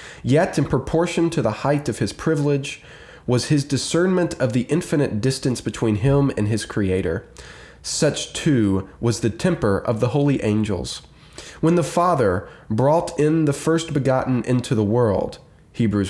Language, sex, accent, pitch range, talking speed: English, male, American, 105-140 Hz, 155 wpm